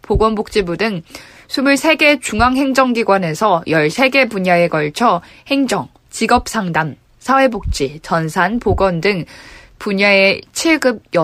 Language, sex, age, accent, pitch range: Korean, female, 20-39, native, 175-235 Hz